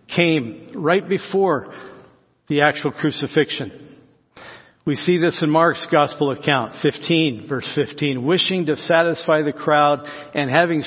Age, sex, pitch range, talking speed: 60-79, male, 135-165 Hz, 125 wpm